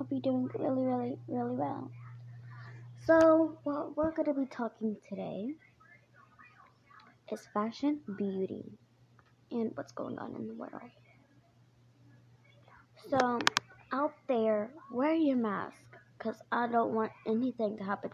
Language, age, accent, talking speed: English, 20-39, American, 120 wpm